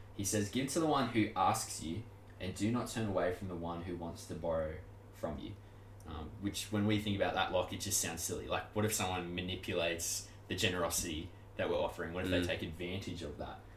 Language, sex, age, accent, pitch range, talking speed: English, male, 20-39, Australian, 90-110 Hz, 225 wpm